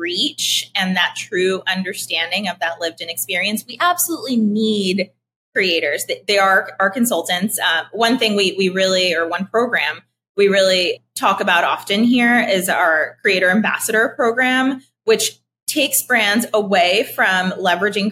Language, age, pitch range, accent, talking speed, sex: English, 20-39, 180-245 Hz, American, 145 wpm, female